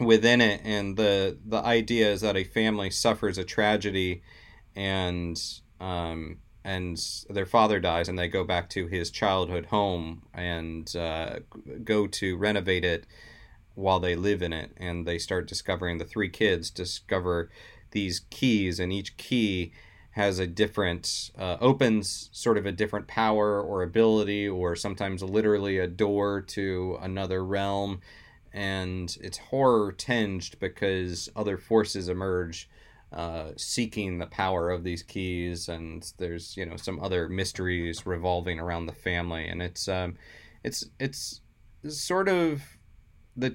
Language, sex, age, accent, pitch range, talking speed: English, male, 30-49, American, 90-105 Hz, 145 wpm